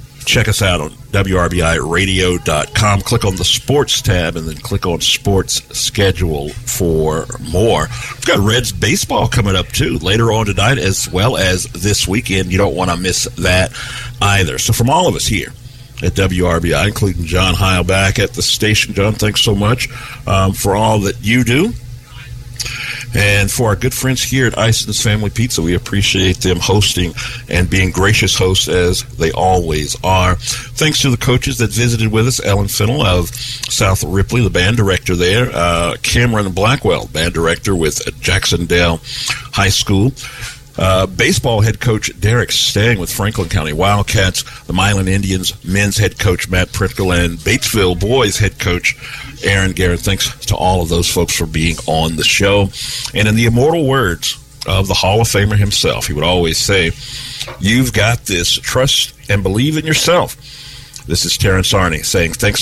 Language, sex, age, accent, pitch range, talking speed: English, male, 50-69, American, 90-120 Hz, 170 wpm